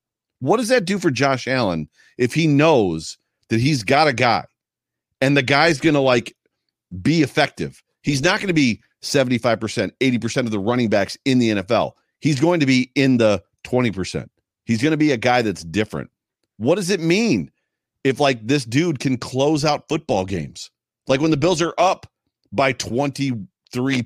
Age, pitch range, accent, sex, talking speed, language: 40-59, 115-150 Hz, American, male, 180 wpm, English